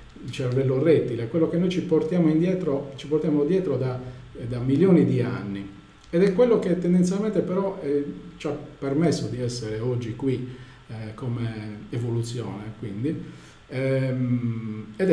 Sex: male